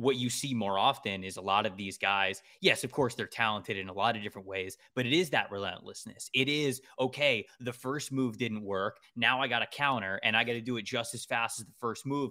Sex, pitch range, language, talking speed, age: male, 105-140 Hz, English, 260 wpm, 20-39